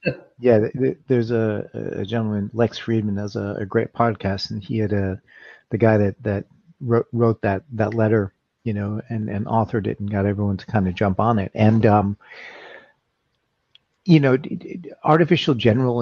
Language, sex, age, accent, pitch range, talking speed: English, male, 40-59, American, 105-120 Hz, 170 wpm